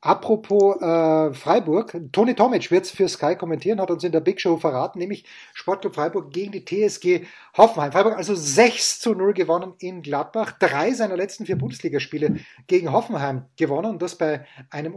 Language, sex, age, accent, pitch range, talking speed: German, male, 30-49, German, 165-205 Hz, 170 wpm